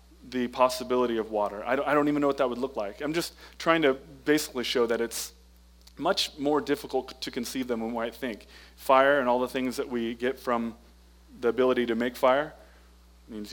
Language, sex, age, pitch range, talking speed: English, male, 30-49, 105-130 Hz, 215 wpm